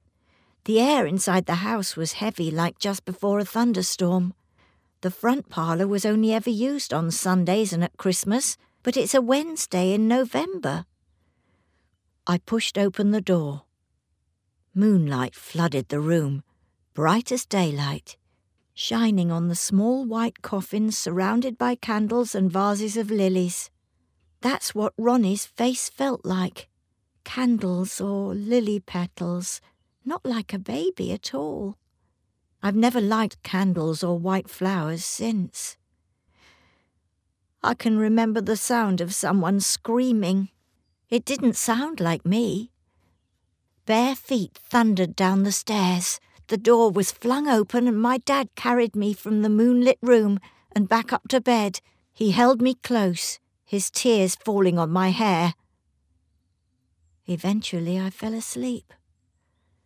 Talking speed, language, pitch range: 130 wpm, English, 170-230 Hz